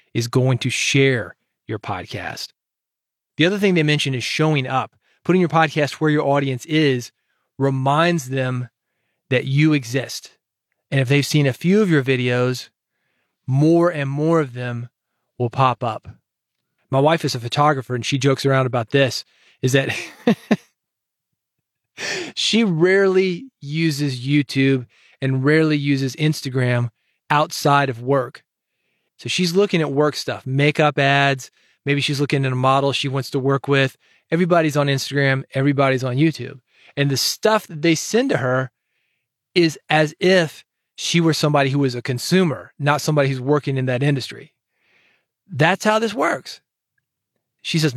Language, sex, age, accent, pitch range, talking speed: English, male, 30-49, American, 135-165 Hz, 155 wpm